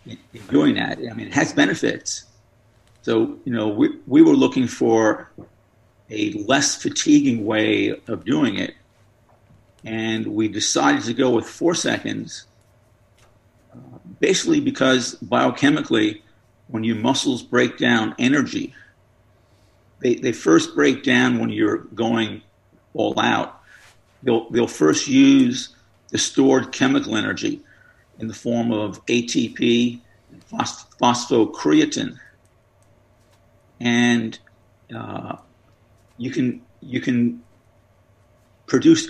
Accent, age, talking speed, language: American, 50-69, 115 wpm, English